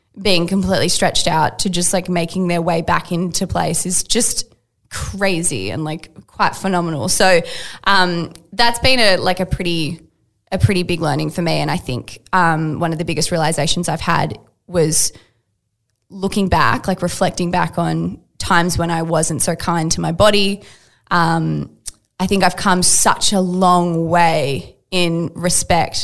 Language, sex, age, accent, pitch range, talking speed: English, female, 20-39, Australian, 165-190 Hz, 165 wpm